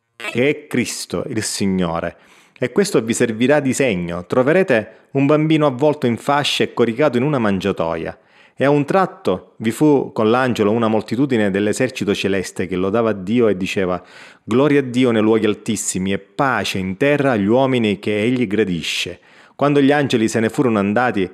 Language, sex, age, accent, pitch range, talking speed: Italian, male, 30-49, native, 100-130 Hz, 170 wpm